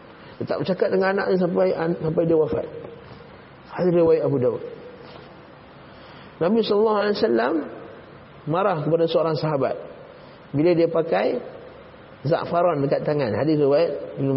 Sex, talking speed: male, 130 wpm